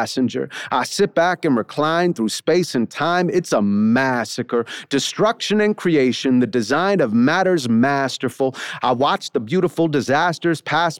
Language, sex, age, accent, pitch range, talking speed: English, male, 40-59, American, 140-210 Hz, 145 wpm